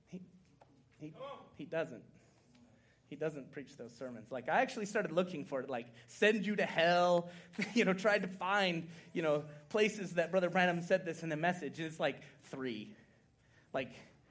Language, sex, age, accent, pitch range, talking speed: English, male, 30-49, American, 210-320 Hz, 170 wpm